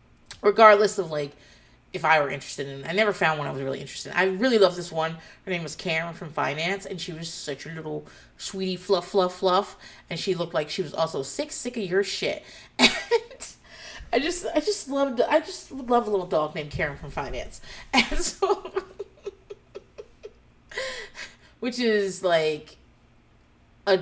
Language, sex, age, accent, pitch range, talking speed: English, female, 30-49, American, 150-215 Hz, 180 wpm